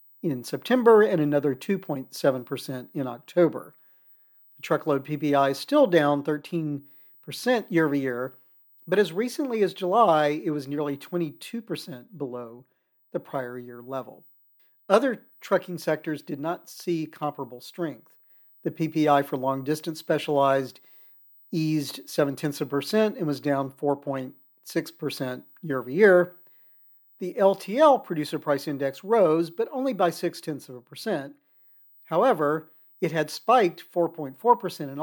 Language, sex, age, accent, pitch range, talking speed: English, male, 50-69, American, 140-175 Hz, 125 wpm